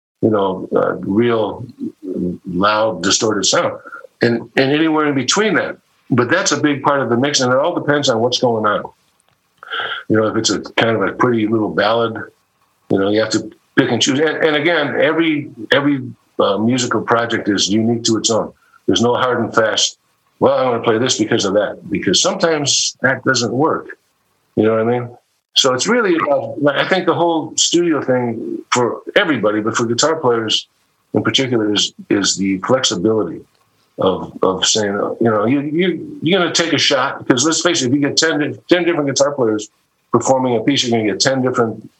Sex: male